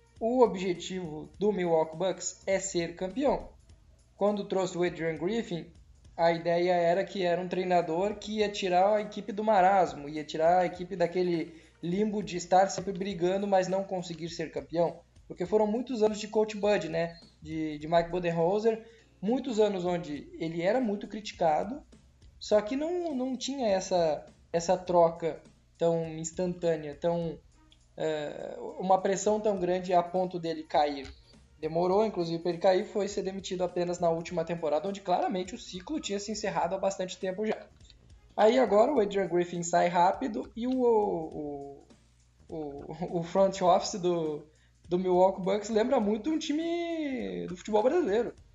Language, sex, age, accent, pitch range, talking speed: Portuguese, male, 20-39, Brazilian, 170-210 Hz, 160 wpm